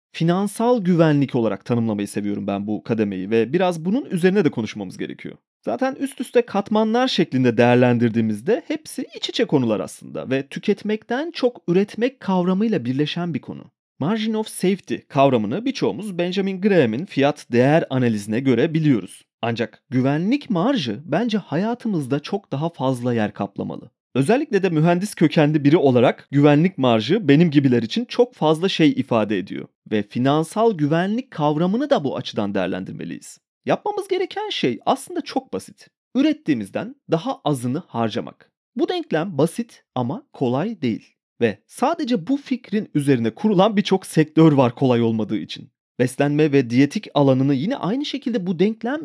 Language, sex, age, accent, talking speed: Turkish, male, 30-49, native, 140 wpm